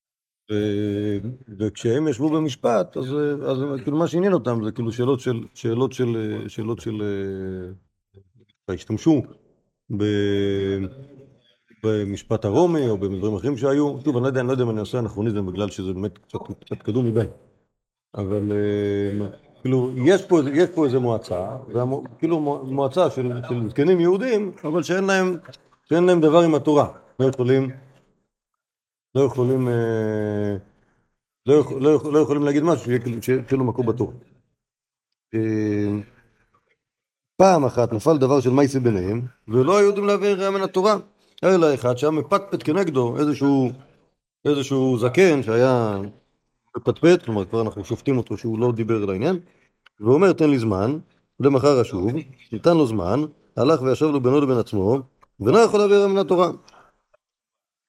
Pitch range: 110-150 Hz